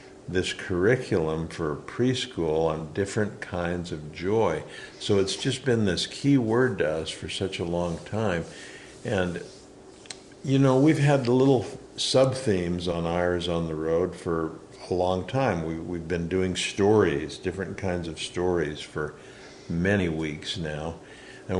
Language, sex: English, male